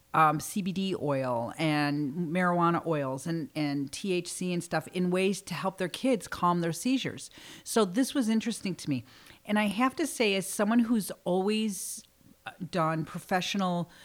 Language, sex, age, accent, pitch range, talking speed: English, female, 40-59, American, 155-210 Hz, 160 wpm